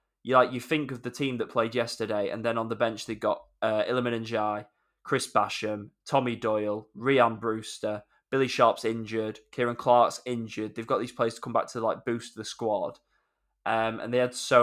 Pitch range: 110-120 Hz